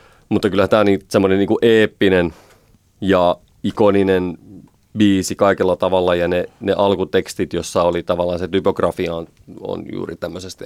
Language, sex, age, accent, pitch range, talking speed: Finnish, male, 30-49, native, 95-110 Hz, 140 wpm